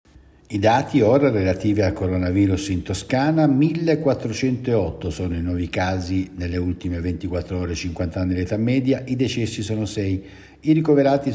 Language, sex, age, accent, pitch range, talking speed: Italian, male, 60-79, native, 90-125 Hz, 155 wpm